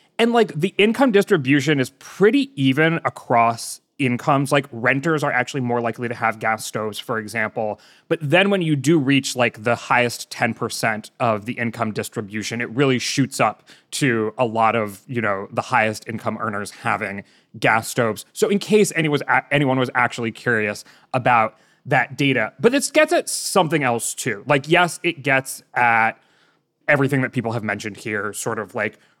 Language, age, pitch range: English, 20-39, 115-150 Hz